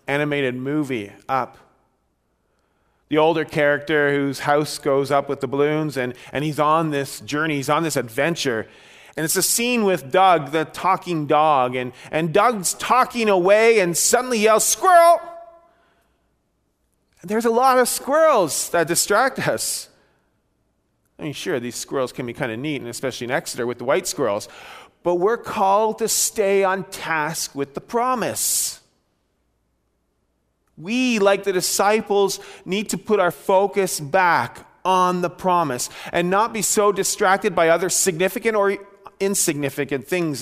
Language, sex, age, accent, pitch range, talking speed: English, male, 30-49, American, 125-190 Hz, 150 wpm